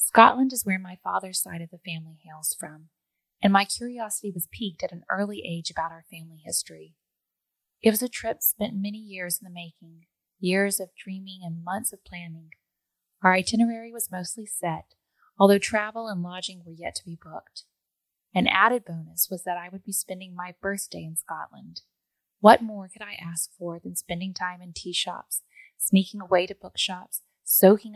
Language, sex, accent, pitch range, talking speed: English, female, American, 170-200 Hz, 180 wpm